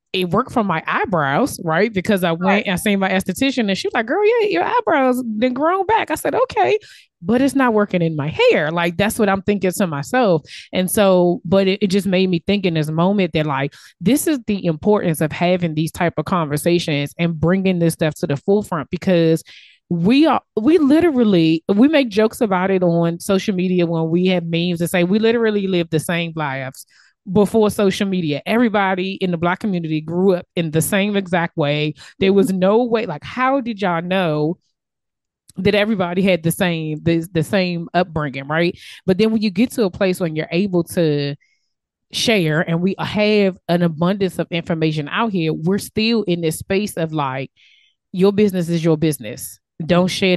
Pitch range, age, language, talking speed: 165-210 Hz, 20-39, English, 200 wpm